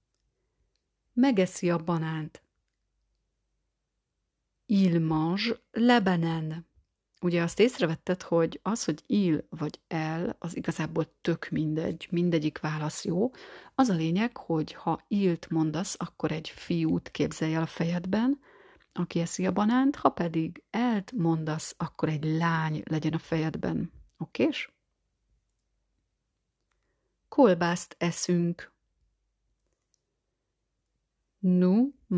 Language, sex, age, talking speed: Hungarian, female, 30-49, 100 wpm